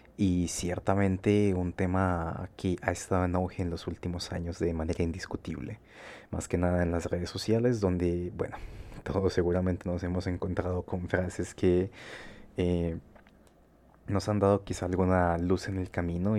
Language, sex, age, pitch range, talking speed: Spanish, male, 30-49, 90-100 Hz, 155 wpm